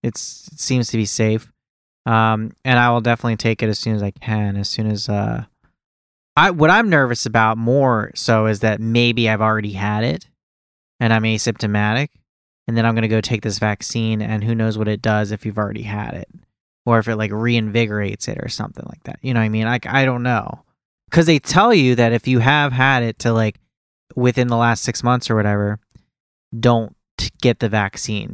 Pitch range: 105-120 Hz